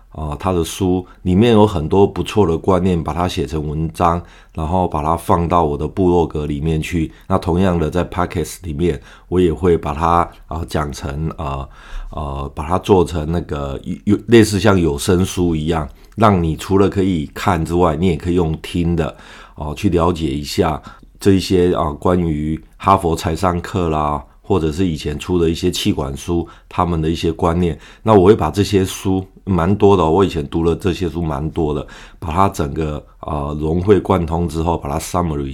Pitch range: 80-90 Hz